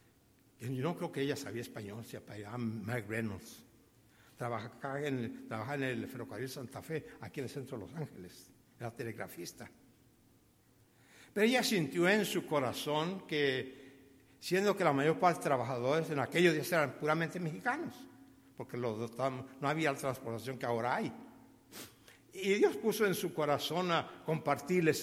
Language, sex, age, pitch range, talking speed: Spanish, male, 60-79, 125-160 Hz, 160 wpm